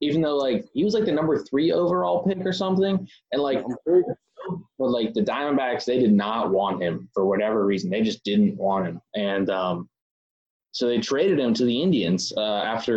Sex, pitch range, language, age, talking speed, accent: male, 105-135 Hz, English, 20-39, 200 wpm, American